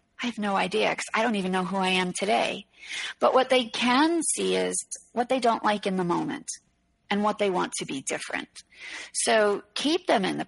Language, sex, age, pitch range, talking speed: English, female, 40-59, 190-230 Hz, 220 wpm